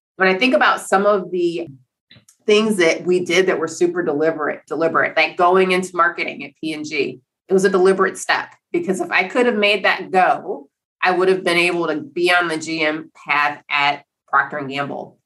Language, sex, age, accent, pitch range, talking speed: English, female, 30-49, American, 150-185 Hz, 205 wpm